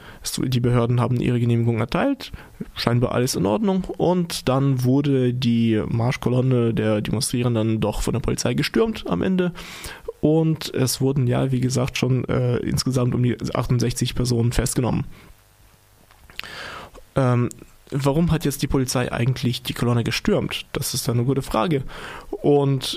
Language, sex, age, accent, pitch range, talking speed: German, male, 20-39, German, 120-150 Hz, 145 wpm